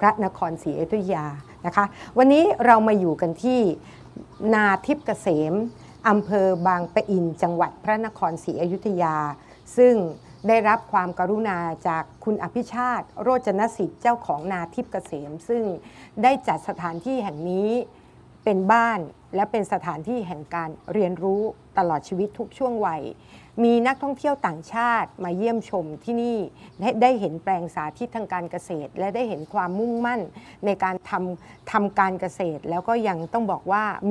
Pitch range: 175-230 Hz